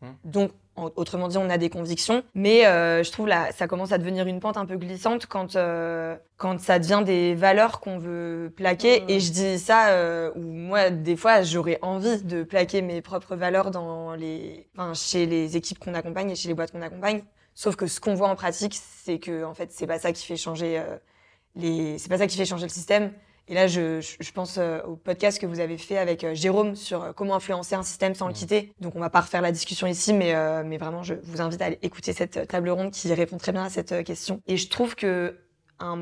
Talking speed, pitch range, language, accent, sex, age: 235 wpm, 170-205 Hz, French, French, female, 20-39